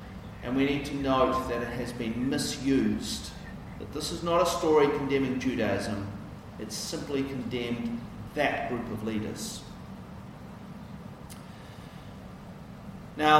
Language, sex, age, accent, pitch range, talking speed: English, male, 40-59, Australian, 120-155 Hz, 115 wpm